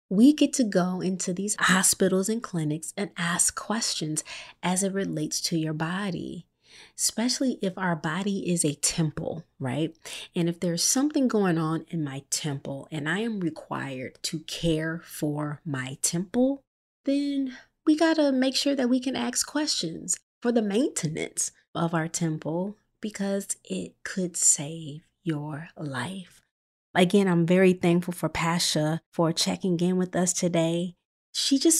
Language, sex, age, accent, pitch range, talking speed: English, female, 30-49, American, 160-205 Hz, 155 wpm